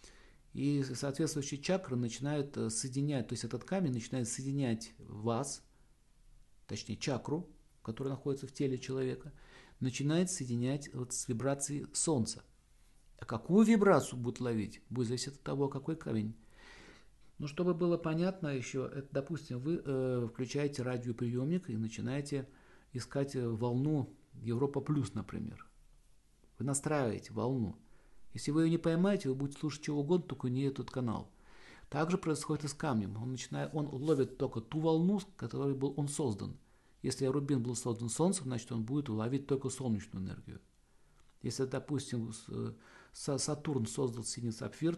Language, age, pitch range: Russian, 50-69, 120-145 Hz